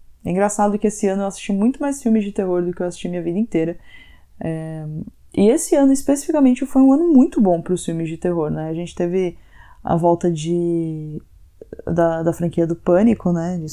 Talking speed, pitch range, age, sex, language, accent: 210 wpm, 165-205 Hz, 20-39, female, Portuguese, Brazilian